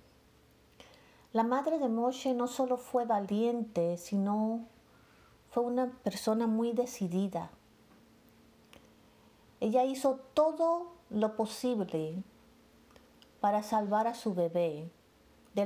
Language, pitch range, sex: English, 190-245 Hz, female